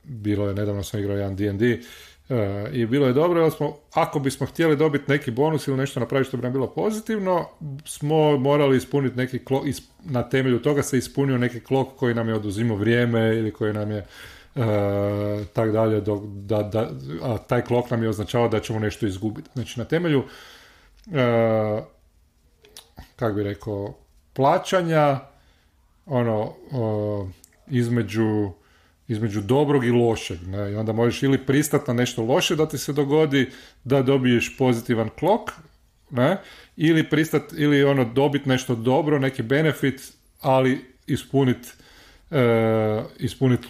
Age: 40-59